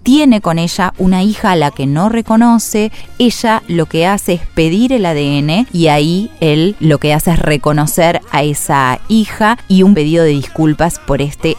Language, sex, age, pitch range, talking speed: Spanish, female, 20-39, 155-210 Hz, 185 wpm